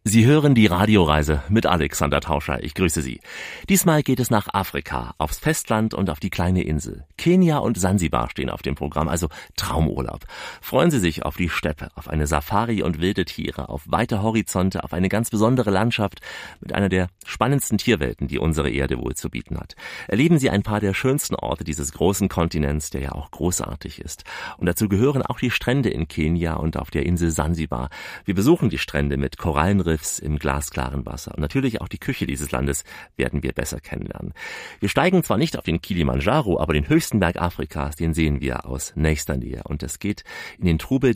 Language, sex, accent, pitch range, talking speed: German, male, German, 75-105 Hz, 195 wpm